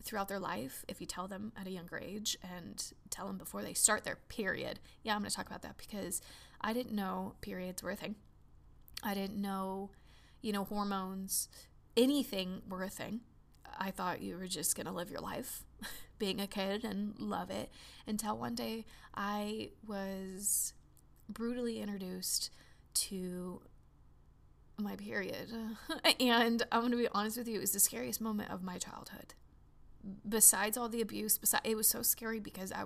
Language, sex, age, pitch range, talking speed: English, female, 20-39, 190-230 Hz, 170 wpm